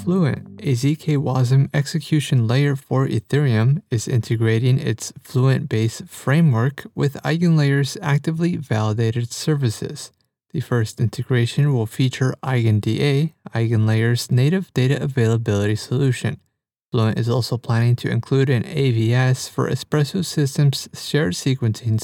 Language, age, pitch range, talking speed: English, 30-49, 115-140 Hz, 110 wpm